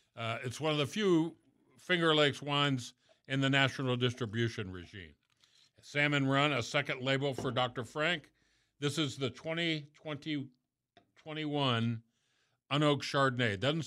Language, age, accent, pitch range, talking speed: English, 50-69, American, 115-140 Hz, 135 wpm